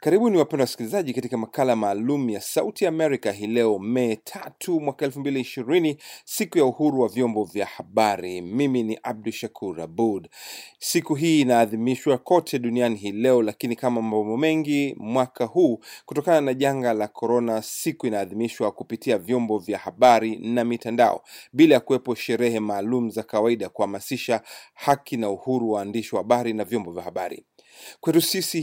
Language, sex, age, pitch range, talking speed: Swahili, male, 30-49, 110-145 Hz, 155 wpm